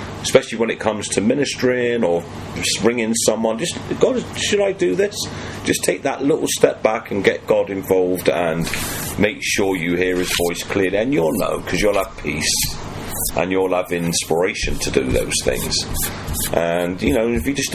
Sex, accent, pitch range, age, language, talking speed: male, British, 90-115 Hz, 40-59, English, 185 wpm